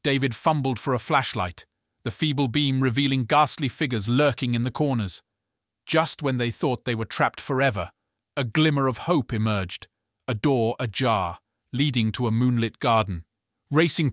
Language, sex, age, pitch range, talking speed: English, male, 40-59, 110-140 Hz, 155 wpm